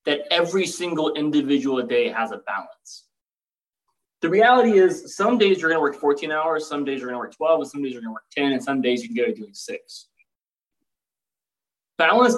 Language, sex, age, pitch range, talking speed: English, male, 20-39, 130-185 Hz, 200 wpm